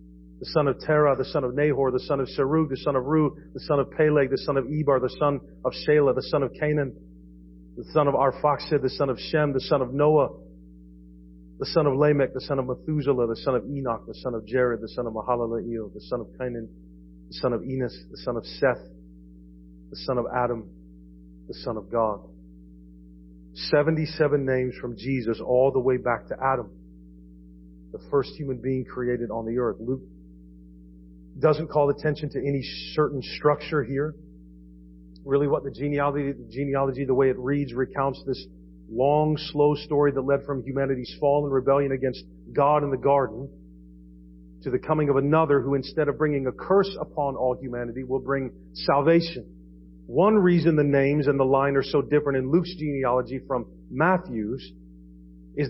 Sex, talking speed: male, 185 wpm